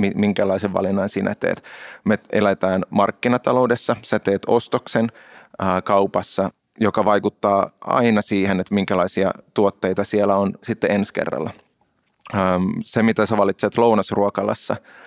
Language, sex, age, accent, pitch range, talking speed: Finnish, male, 20-39, native, 95-110 Hz, 120 wpm